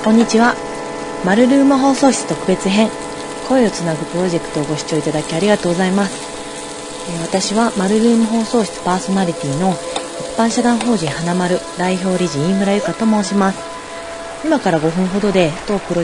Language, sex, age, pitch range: Japanese, female, 30-49, 155-195 Hz